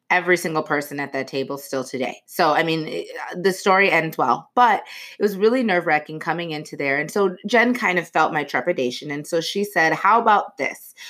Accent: American